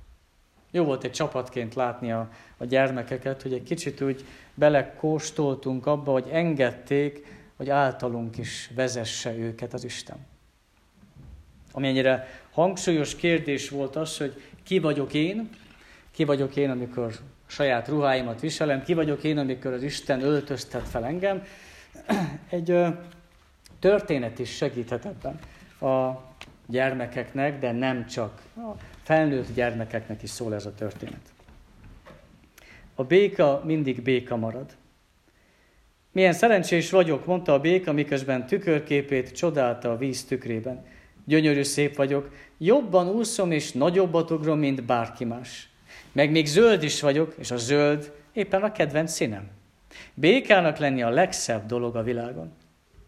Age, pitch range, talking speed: 50-69, 120-155 Hz, 130 wpm